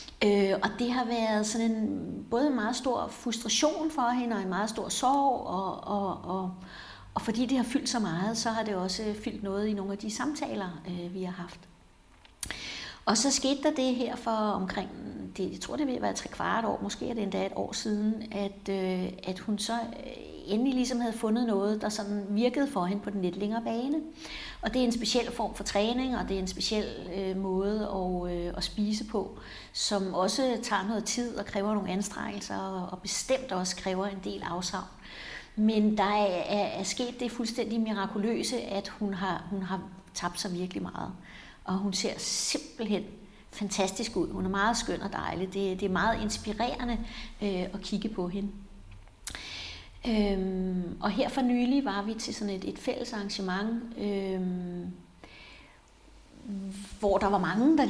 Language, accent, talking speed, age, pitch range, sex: Danish, native, 180 wpm, 60-79, 190-235 Hz, female